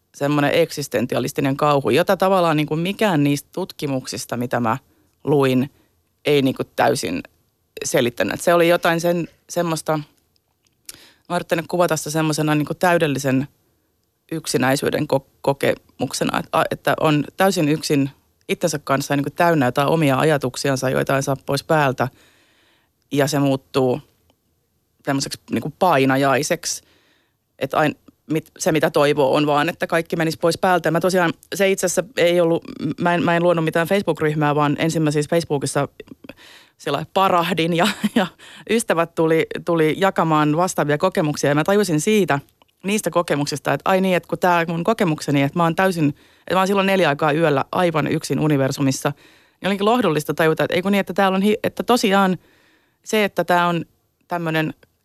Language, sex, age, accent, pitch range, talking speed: Finnish, female, 30-49, native, 145-175 Hz, 150 wpm